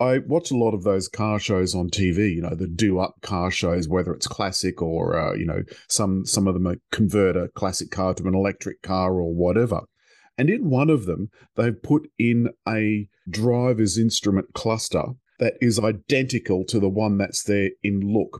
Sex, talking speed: male, 190 wpm